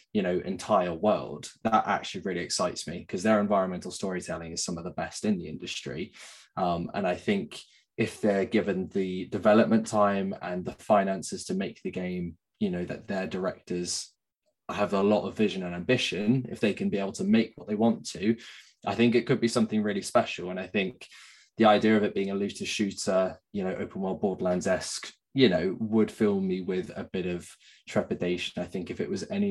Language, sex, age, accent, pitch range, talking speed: English, male, 20-39, British, 95-120 Hz, 205 wpm